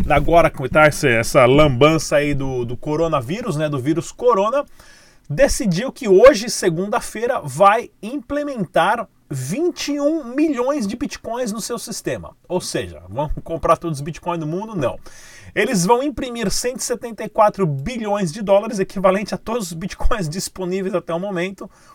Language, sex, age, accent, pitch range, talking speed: Portuguese, male, 30-49, Brazilian, 160-210 Hz, 140 wpm